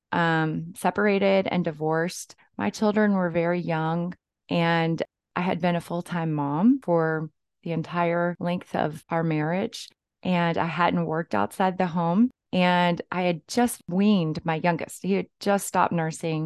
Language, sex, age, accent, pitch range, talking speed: English, female, 20-39, American, 165-205 Hz, 155 wpm